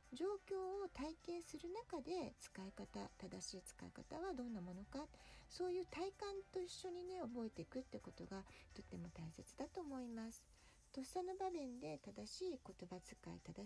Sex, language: female, Japanese